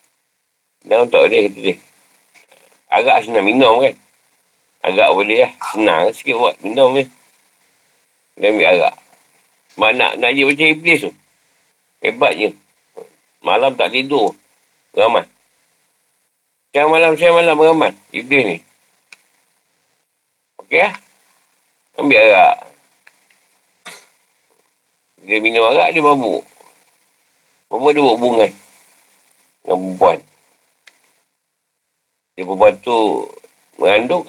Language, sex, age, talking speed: Malay, male, 50-69, 95 wpm